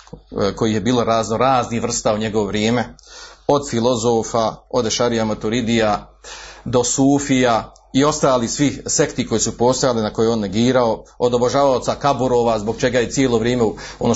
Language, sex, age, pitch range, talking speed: Croatian, male, 40-59, 115-145 Hz, 155 wpm